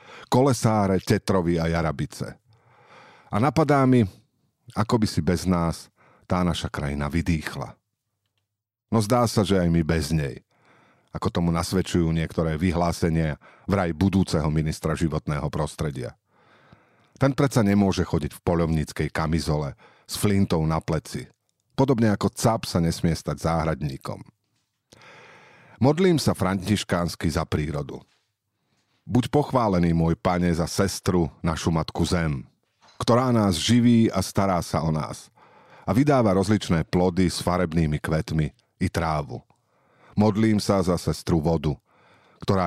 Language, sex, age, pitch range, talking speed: Slovak, male, 50-69, 80-110 Hz, 125 wpm